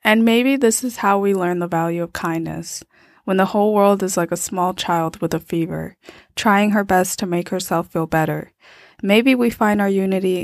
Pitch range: 165-195 Hz